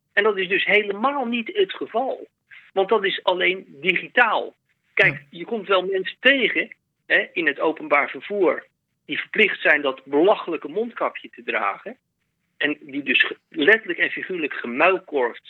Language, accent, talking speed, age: Dutch, Dutch, 145 wpm, 50-69